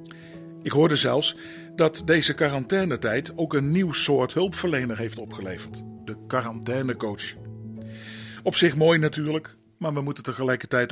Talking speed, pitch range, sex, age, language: 125 wpm, 115-155 Hz, male, 50-69, Dutch